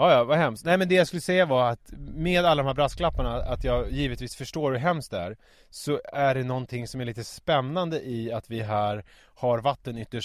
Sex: male